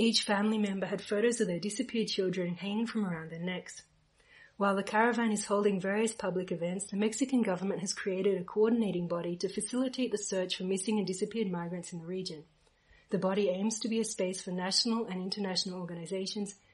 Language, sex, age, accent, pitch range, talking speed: English, female, 30-49, Australian, 180-215 Hz, 195 wpm